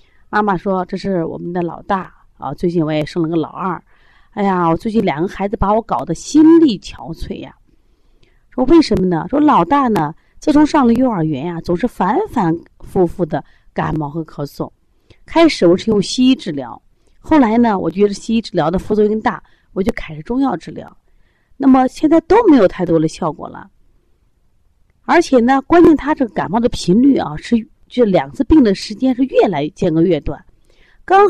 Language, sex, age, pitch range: Chinese, female, 30-49, 170-265 Hz